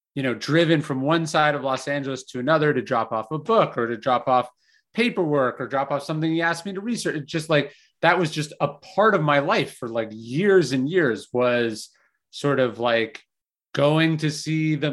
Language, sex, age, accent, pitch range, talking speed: English, male, 30-49, American, 135-170 Hz, 215 wpm